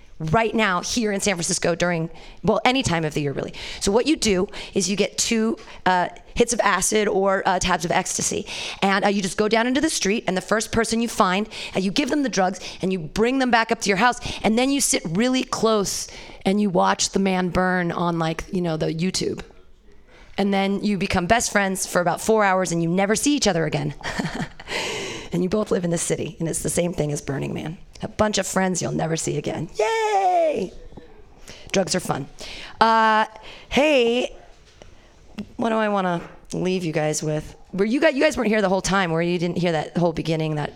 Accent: American